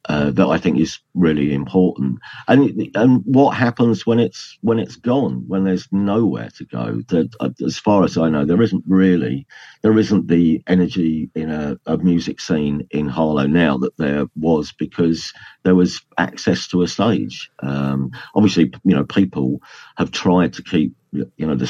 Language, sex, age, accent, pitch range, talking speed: English, male, 50-69, British, 70-95 Hz, 185 wpm